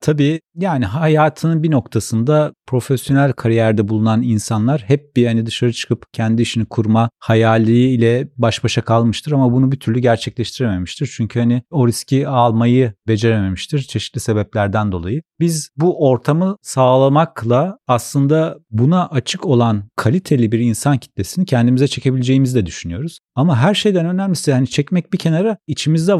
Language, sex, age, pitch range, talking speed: Turkish, male, 40-59, 120-160 Hz, 135 wpm